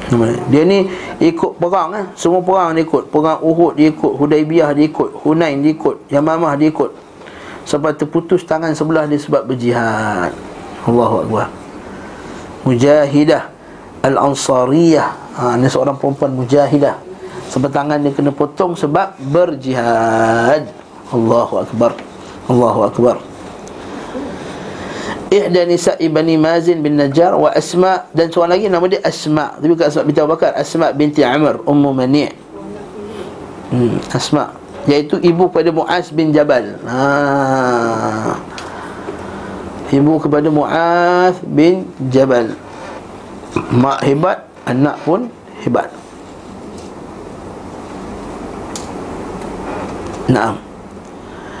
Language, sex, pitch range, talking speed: Malay, male, 135-165 Hz, 105 wpm